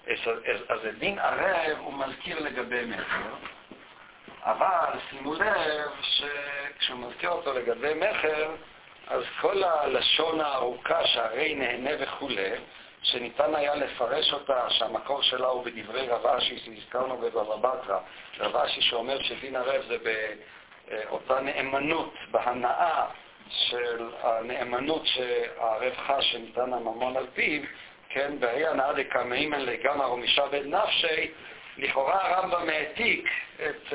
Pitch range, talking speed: 125-160 Hz, 110 wpm